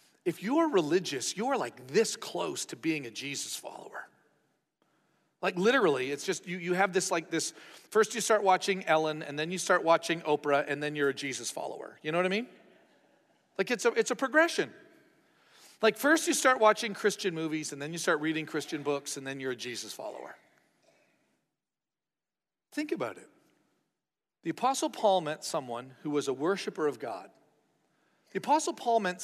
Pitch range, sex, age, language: 160-250 Hz, male, 40-59, English